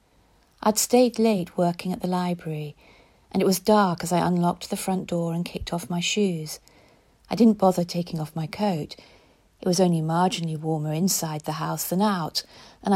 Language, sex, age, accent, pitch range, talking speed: English, female, 40-59, British, 165-195 Hz, 185 wpm